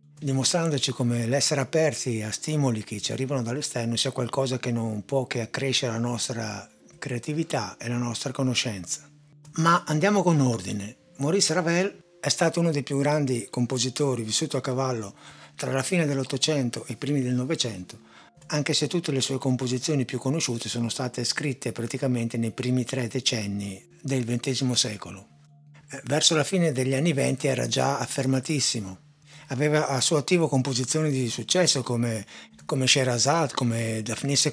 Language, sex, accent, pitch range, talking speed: Italian, male, native, 115-145 Hz, 155 wpm